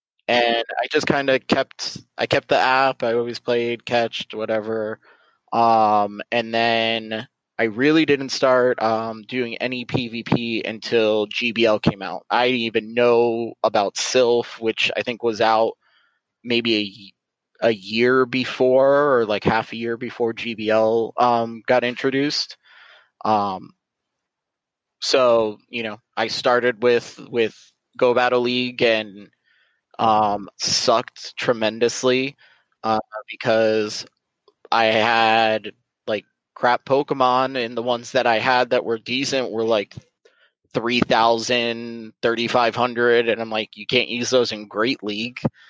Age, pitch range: 20-39, 110-125 Hz